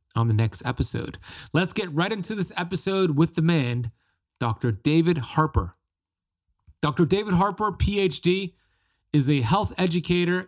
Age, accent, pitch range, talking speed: 30-49, American, 120-165 Hz, 135 wpm